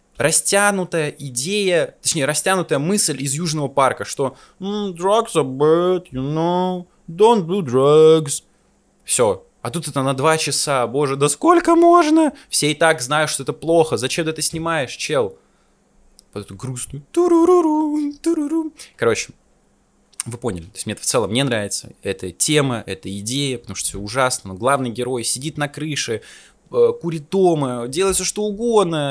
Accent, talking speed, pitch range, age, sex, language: native, 150 wpm, 125-180 Hz, 20-39, male, Russian